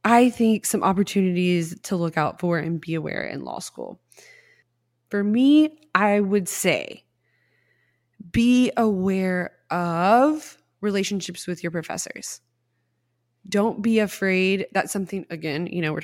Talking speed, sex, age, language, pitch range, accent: 130 wpm, female, 20-39, English, 160-195 Hz, American